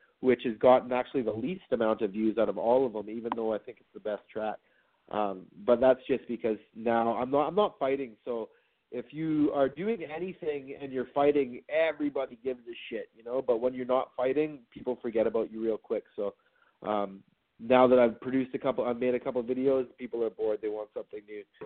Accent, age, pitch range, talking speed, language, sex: American, 30-49, 110-135 Hz, 220 wpm, English, male